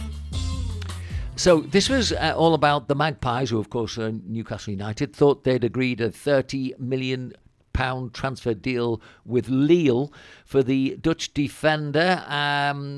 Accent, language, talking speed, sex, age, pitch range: British, English, 130 wpm, male, 50-69, 110-135 Hz